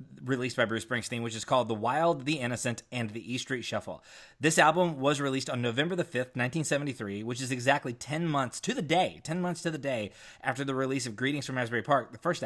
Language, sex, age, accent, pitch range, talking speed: English, male, 20-39, American, 115-150 Hz, 230 wpm